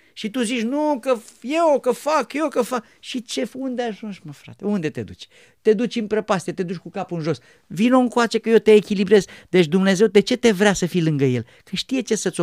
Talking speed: 240 wpm